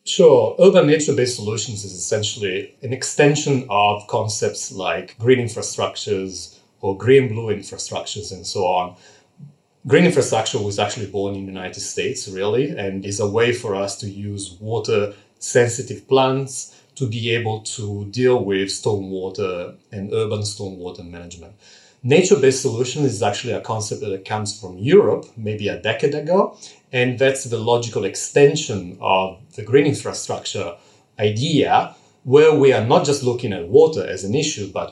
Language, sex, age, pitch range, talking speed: English, male, 30-49, 100-135 Hz, 150 wpm